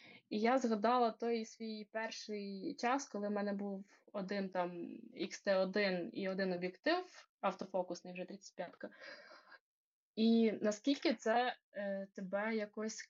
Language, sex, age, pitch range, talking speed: Ukrainian, female, 20-39, 195-230 Hz, 120 wpm